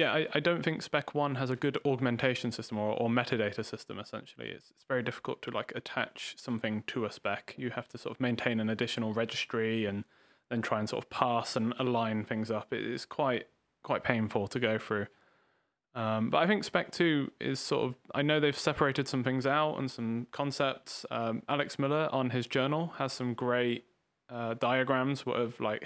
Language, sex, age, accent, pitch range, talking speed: English, male, 20-39, British, 115-130 Hz, 200 wpm